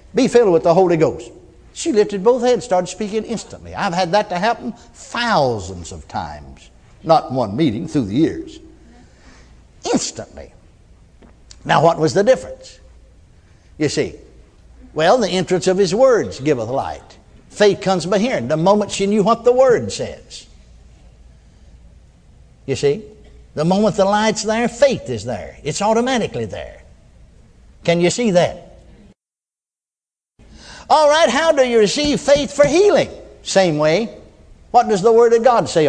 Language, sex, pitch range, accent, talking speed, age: English, male, 150-225 Hz, American, 150 wpm, 60-79